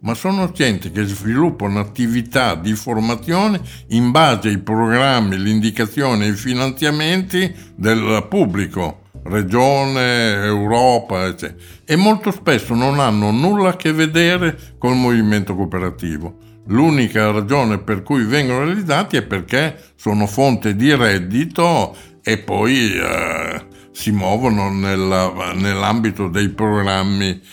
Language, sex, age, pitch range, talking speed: Italian, male, 60-79, 100-130 Hz, 120 wpm